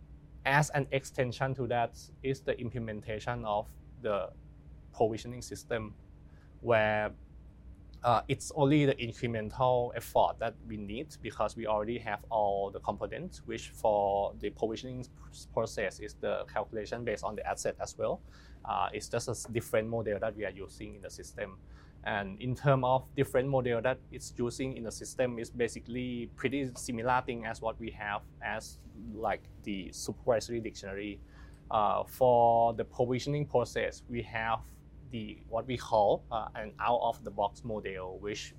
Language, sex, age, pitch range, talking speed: English, male, 20-39, 100-125 Hz, 150 wpm